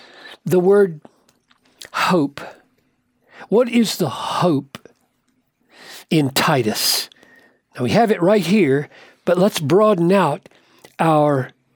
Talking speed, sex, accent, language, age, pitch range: 100 wpm, male, American, English, 60-79, 160-205 Hz